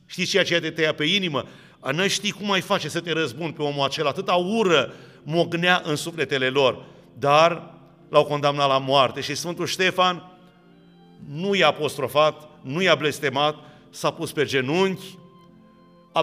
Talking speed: 160 wpm